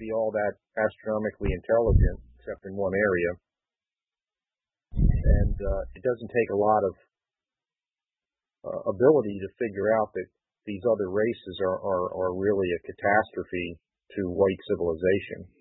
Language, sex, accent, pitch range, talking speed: English, male, American, 100-120 Hz, 135 wpm